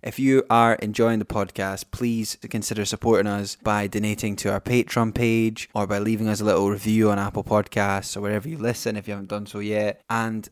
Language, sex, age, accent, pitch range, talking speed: English, male, 10-29, British, 100-120 Hz, 210 wpm